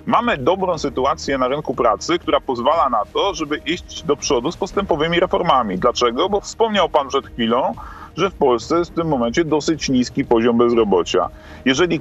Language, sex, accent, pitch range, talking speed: Polish, male, native, 130-185 Hz, 175 wpm